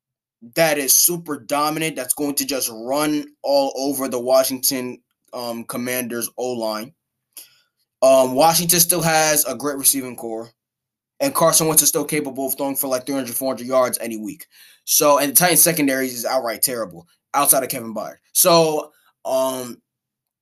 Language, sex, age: English, male, 20-39